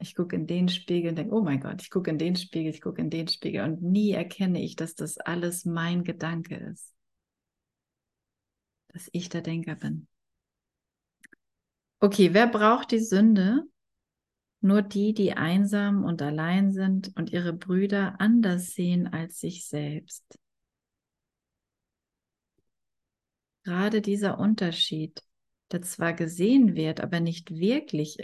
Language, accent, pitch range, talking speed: German, German, 160-195 Hz, 140 wpm